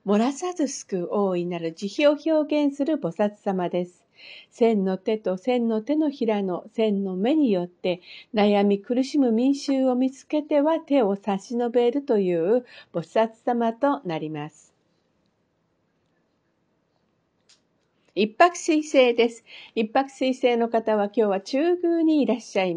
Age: 50-69